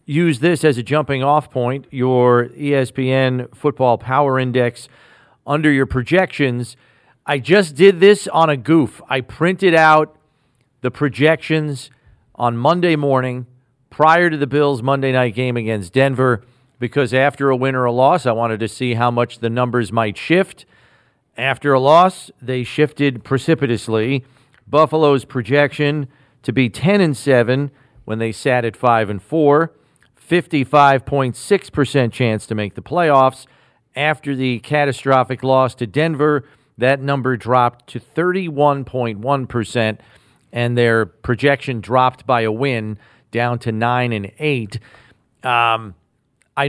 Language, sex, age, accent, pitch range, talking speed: English, male, 40-59, American, 120-150 Hz, 140 wpm